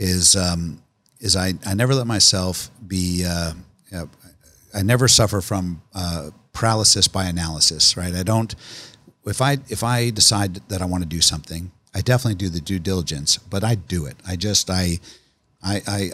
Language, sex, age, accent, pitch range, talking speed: English, male, 50-69, American, 90-110 Hz, 175 wpm